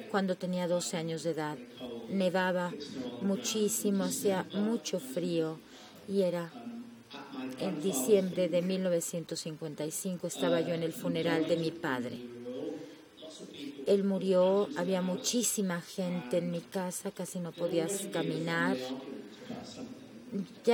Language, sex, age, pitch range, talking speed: Spanish, female, 30-49, 160-205 Hz, 110 wpm